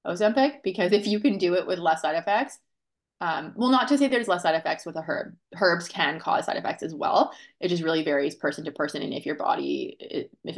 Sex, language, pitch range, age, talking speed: female, English, 165-210 Hz, 20-39, 240 wpm